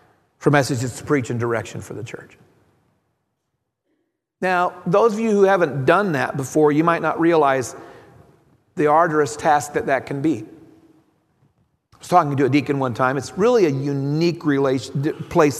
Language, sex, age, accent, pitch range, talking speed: English, male, 40-59, American, 145-220 Hz, 160 wpm